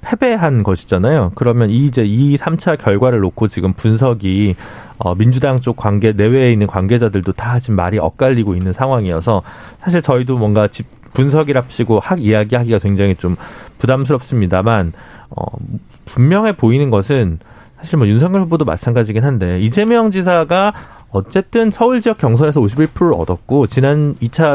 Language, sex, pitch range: Korean, male, 100-150 Hz